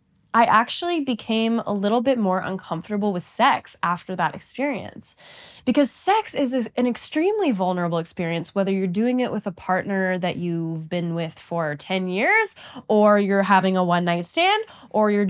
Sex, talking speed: female, 170 wpm